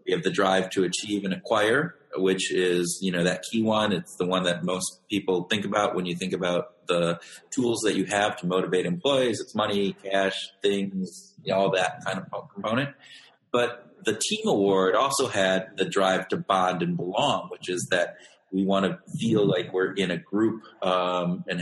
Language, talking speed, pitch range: English, 195 wpm, 90-110 Hz